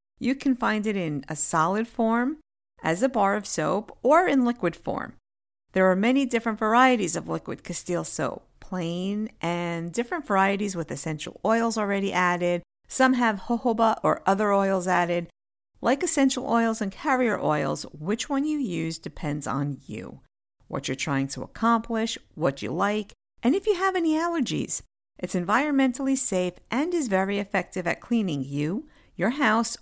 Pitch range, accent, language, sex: 175-245 Hz, American, English, female